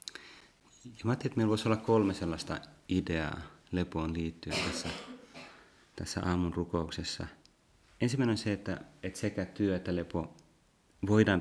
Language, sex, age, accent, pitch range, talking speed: Finnish, male, 30-49, native, 80-100 Hz, 135 wpm